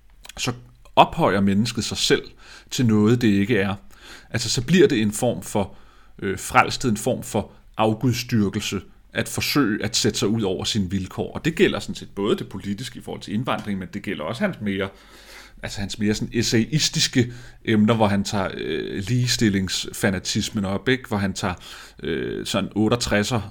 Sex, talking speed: male, 170 wpm